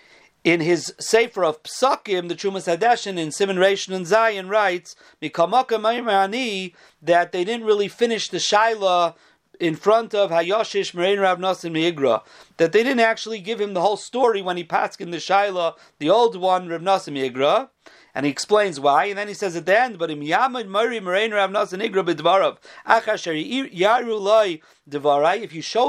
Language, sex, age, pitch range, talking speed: English, male, 40-59, 155-210 Hz, 145 wpm